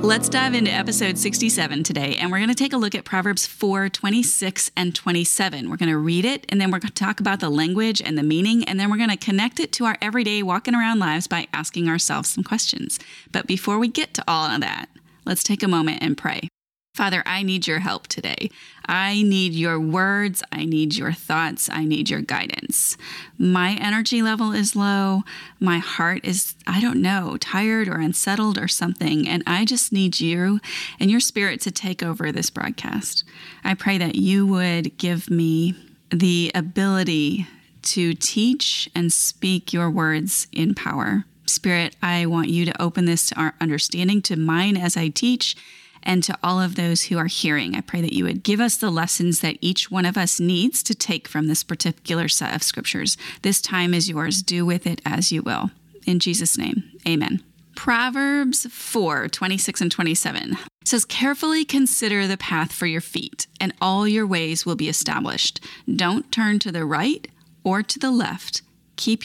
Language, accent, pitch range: English, American, 170-210 Hz